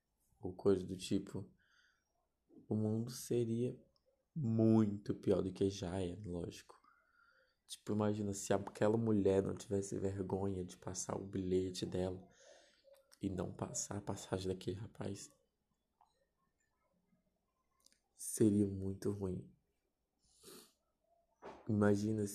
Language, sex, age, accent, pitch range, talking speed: Portuguese, male, 20-39, Brazilian, 95-115 Hz, 100 wpm